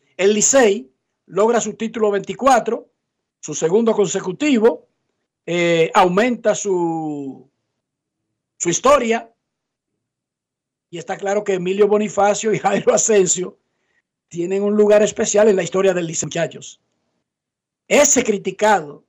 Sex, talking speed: male, 105 wpm